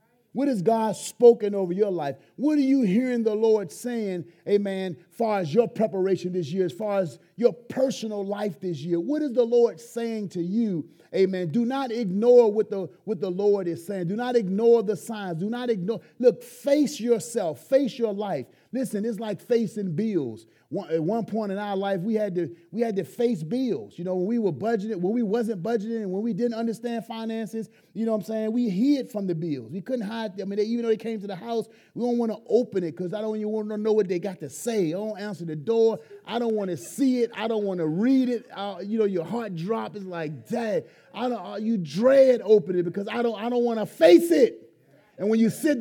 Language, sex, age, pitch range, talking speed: English, male, 30-49, 195-235 Hz, 225 wpm